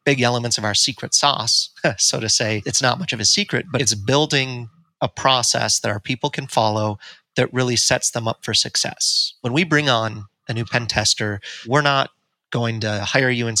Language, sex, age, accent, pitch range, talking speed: English, male, 30-49, American, 110-130 Hz, 205 wpm